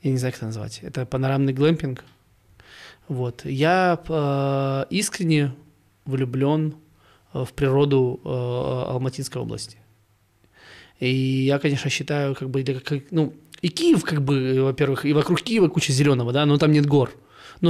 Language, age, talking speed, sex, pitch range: Russian, 20-39, 135 wpm, male, 125-150 Hz